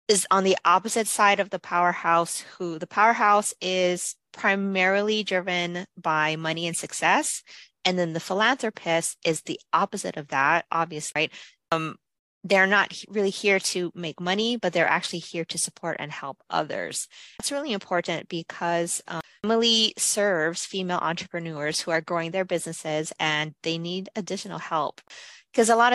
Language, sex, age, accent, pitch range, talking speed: English, female, 30-49, American, 165-200 Hz, 155 wpm